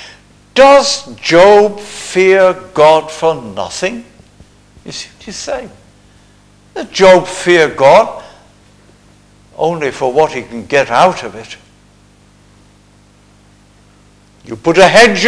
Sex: male